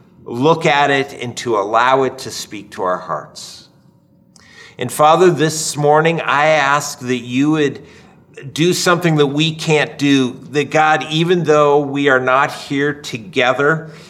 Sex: male